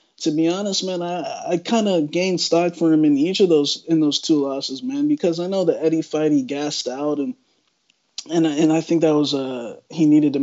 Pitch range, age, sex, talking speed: 135-165 Hz, 20-39, male, 245 wpm